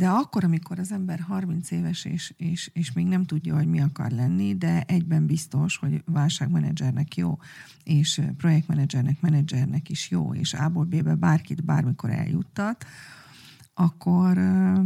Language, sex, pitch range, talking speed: Hungarian, female, 150-175 Hz, 140 wpm